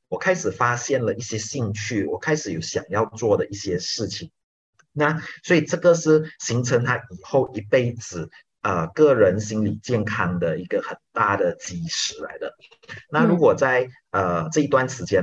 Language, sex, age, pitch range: Chinese, male, 30-49, 105-160 Hz